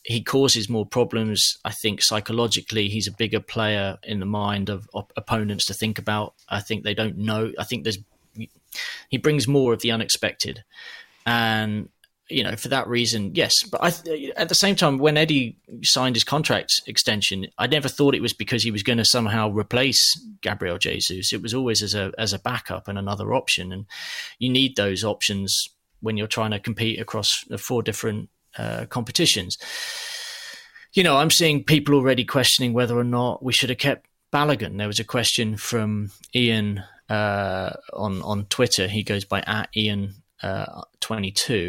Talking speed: 180 wpm